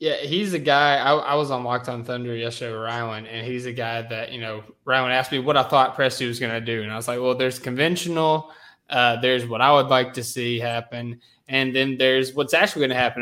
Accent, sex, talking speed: American, male, 250 wpm